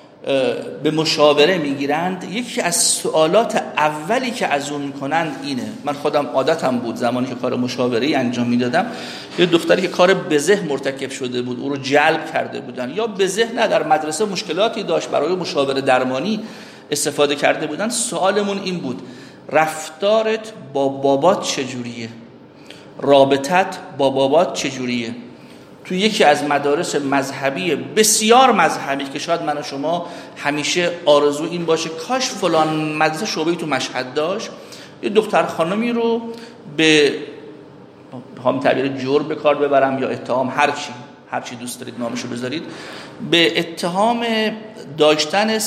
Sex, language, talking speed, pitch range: male, Persian, 140 wpm, 135-190 Hz